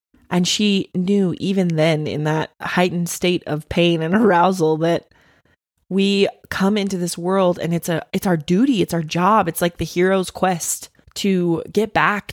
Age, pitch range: 20-39, 160-190 Hz